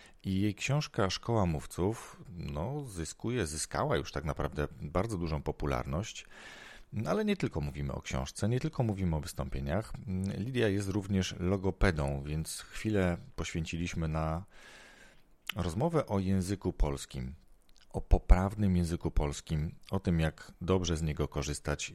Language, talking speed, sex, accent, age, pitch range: Polish, 125 wpm, male, native, 40-59, 80-110 Hz